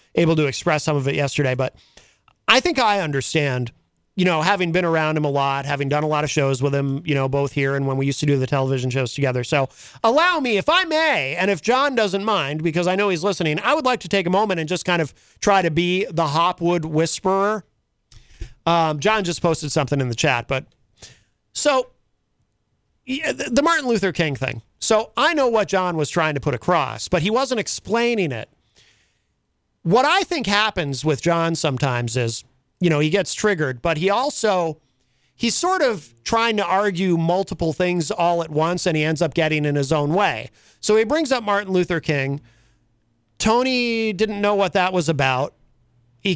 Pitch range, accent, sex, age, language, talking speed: 145-205 Hz, American, male, 40-59, English, 200 wpm